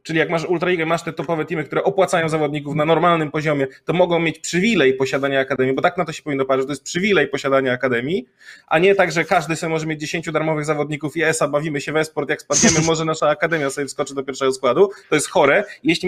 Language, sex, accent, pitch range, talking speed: Polish, male, native, 150-200 Hz, 240 wpm